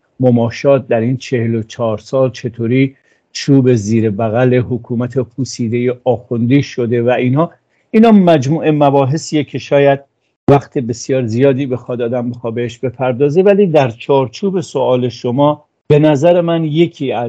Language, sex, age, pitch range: English, male, 50-69, 115-140 Hz